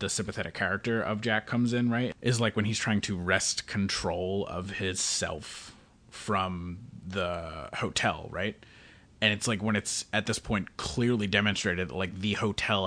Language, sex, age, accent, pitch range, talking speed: English, male, 30-49, American, 90-110 Hz, 175 wpm